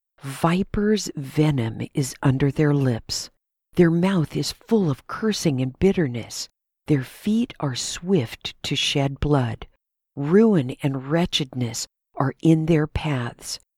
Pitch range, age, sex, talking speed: 135-175 Hz, 50-69, female, 120 wpm